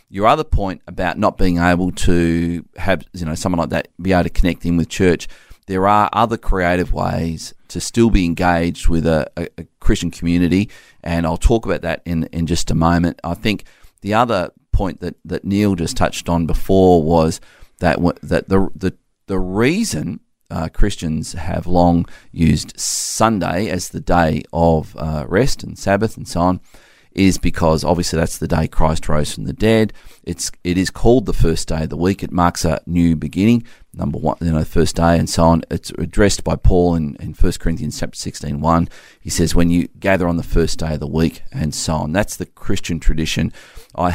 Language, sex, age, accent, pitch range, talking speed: English, male, 30-49, Australian, 80-95 Hz, 200 wpm